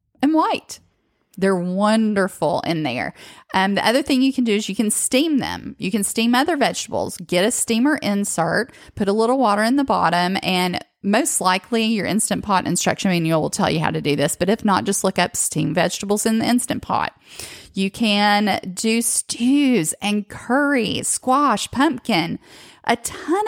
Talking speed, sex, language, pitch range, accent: 180 wpm, female, English, 185-245 Hz, American